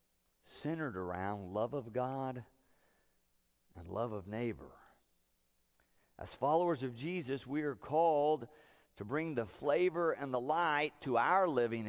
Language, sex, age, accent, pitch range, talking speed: English, male, 50-69, American, 115-155 Hz, 130 wpm